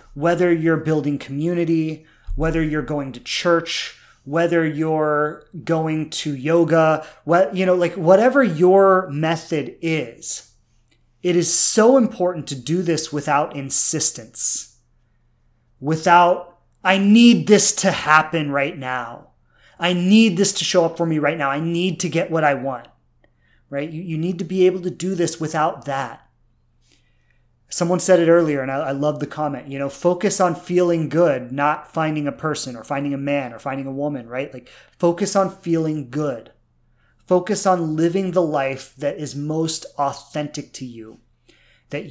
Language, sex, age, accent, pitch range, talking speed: English, male, 30-49, American, 140-175 Hz, 160 wpm